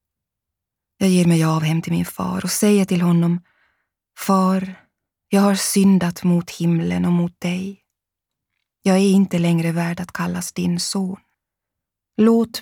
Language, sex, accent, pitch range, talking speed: Swedish, female, native, 160-185 Hz, 145 wpm